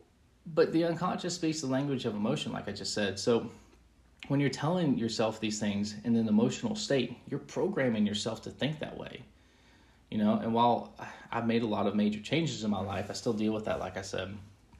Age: 20-39